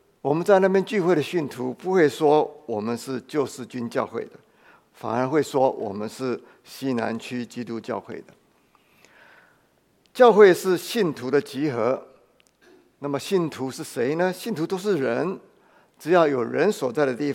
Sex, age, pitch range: male, 50-69, 120-150 Hz